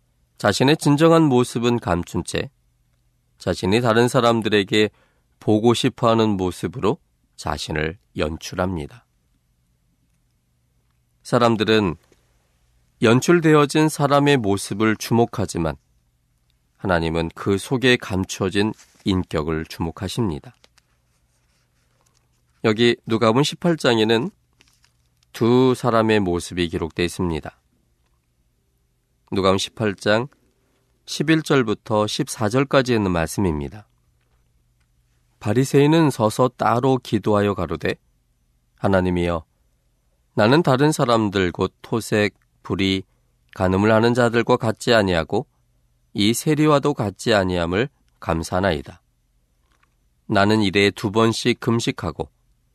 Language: Korean